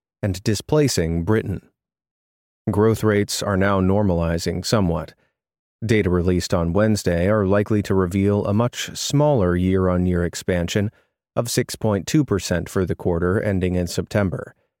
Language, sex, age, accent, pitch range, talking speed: English, male, 30-49, American, 90-115 Hz, 120 wpm